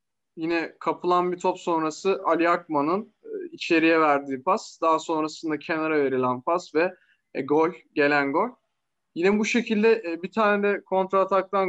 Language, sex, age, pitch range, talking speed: Turkish, male, 20-39, 155-200 Hz, 150 wpm